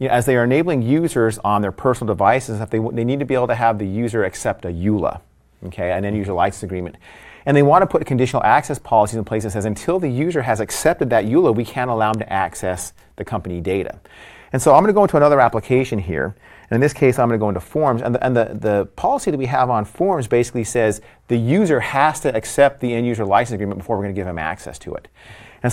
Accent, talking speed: American, 260 wpm